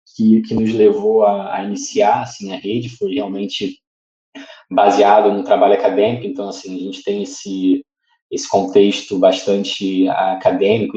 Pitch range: 100-135 Hz